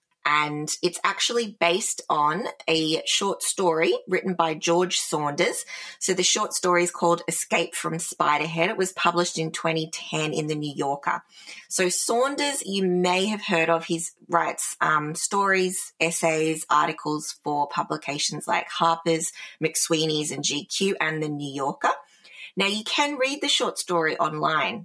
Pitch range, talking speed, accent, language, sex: 155-180 Hz, 150 wpm, Australian, English, female